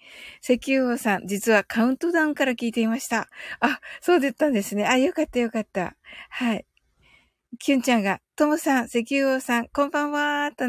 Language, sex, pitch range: Japanese, female, 210-275 Hz